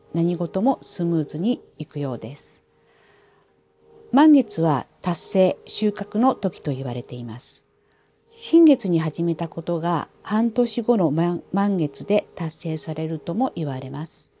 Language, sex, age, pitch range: Japanese, female, 50-69, 155-225 Hz